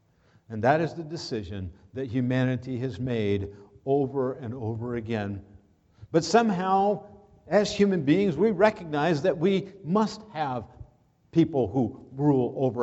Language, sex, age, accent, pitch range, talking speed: English, male, 50-69, American, 105-150 Hz, 130 wpm